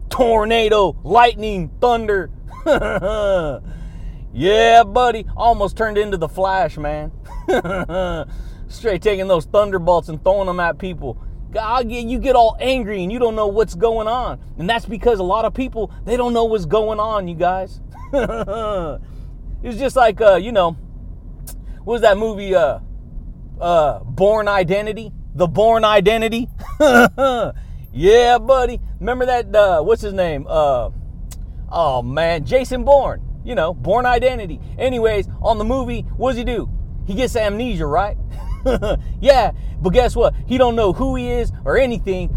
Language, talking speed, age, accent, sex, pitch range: English, 150 wpm, 30-49, American, male, 180-235 Hz